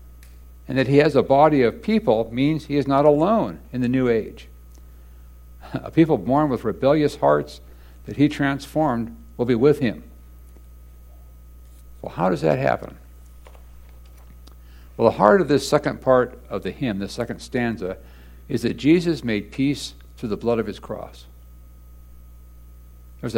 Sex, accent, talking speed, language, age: male, American, 155 wpm, English, 60-79